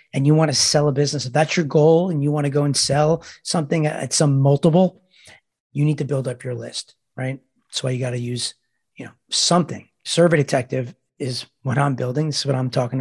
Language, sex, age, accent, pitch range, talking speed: English, male, 40-59, American, 130-160 Hz, 230 wpm